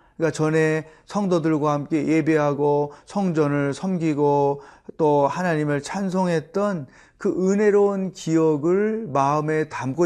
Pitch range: 135-170 Hz